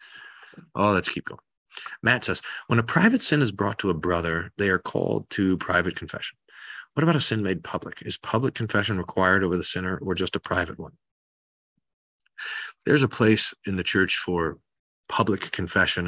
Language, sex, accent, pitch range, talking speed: English, male, American, 90-110 Hz, 180 wpm